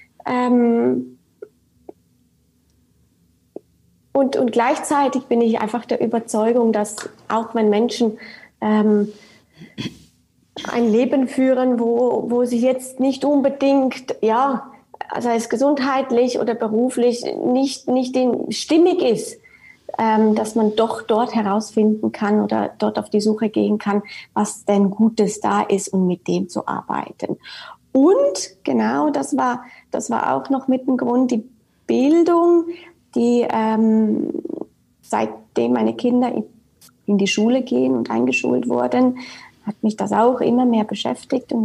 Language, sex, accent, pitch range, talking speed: German, female, German, 210-255 Hz, 130 wpm